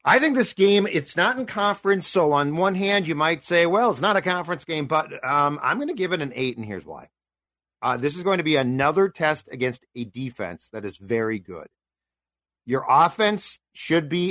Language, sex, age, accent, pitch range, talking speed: English, male, 50-69, American, 125-165 Hz, 220 wpm